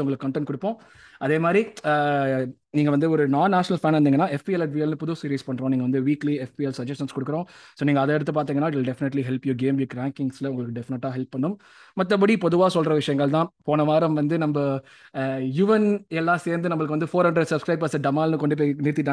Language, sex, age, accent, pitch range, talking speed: Tamil, male, 20-39, native, 140-170 Hz, 45 wpm